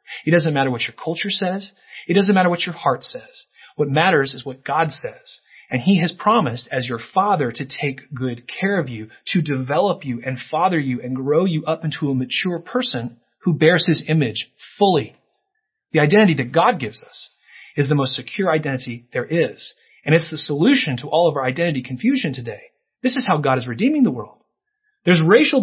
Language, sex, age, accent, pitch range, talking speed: English, male, 30-49, American, 140-220 Hz, 200 wpm